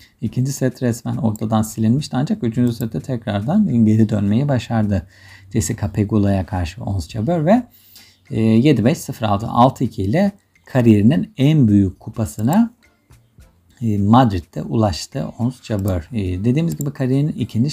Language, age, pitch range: Turkish, 50-69, 100-135 Hz